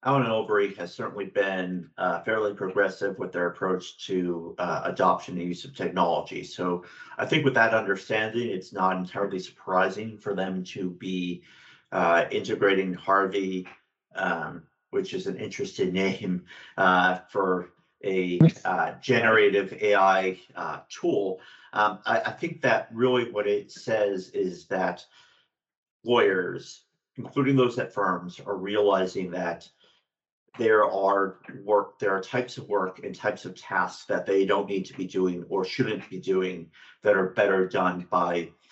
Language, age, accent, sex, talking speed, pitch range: English, 50-69, American, male, 150 wpm, 90-105 Hz